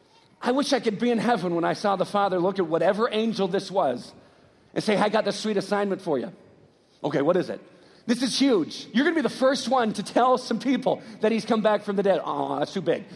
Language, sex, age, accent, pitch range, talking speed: English, male, 40-59, American, 215-295 Hz, 255 wpm